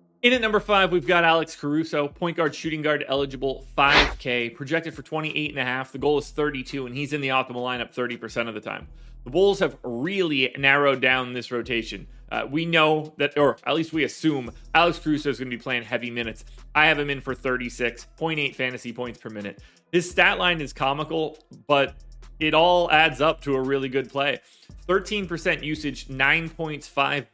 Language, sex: English, male